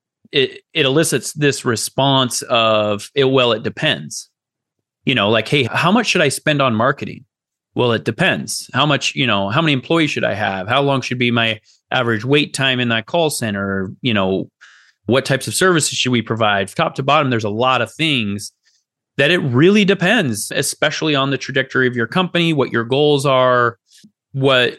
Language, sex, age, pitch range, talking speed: English, male, 30-49, 115-145 Hz, 190 wpm